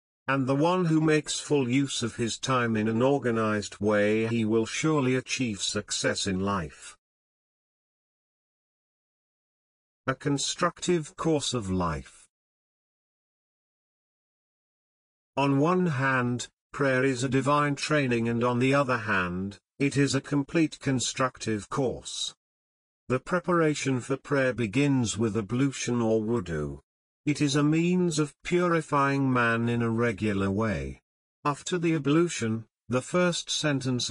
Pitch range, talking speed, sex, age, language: 110-145 Hz, 125 wpm, male, 50-69, Urdu